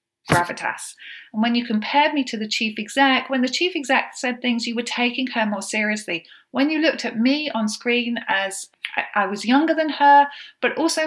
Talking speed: 200 wpm